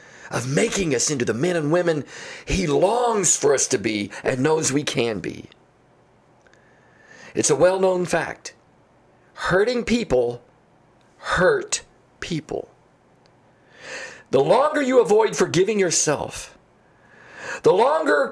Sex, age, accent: male, 50-69, American